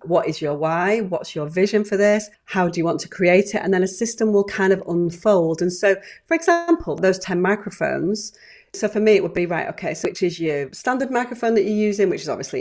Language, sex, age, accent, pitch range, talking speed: English, female, 40-59, British, 165-200 Hz, 245 wpm